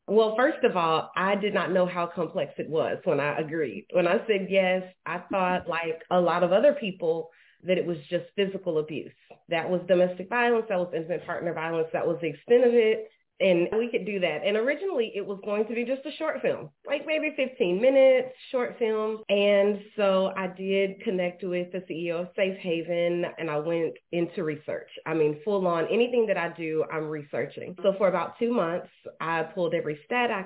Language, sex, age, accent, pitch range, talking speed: English, female, 30-49, American, 160-205 Hz, 210 wpm